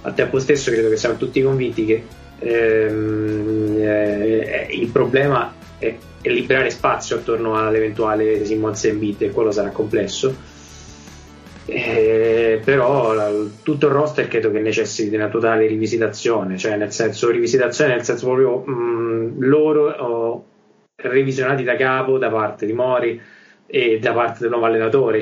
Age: 20-39